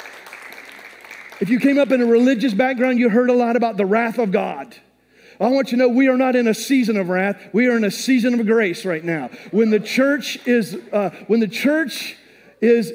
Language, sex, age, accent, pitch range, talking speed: English, male, 40-59, American, 215-260 Hz, 225 wpm